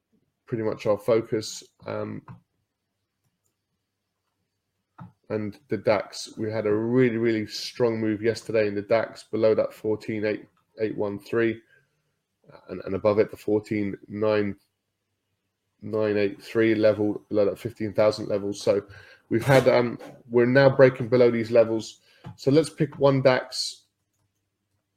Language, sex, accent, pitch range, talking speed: English, male, British, 100-120 Hz, 135 wpm